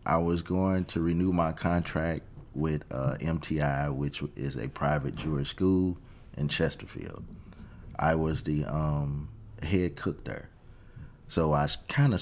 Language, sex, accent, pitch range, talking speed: English, male, American, 75-95 Hz, 140 wpm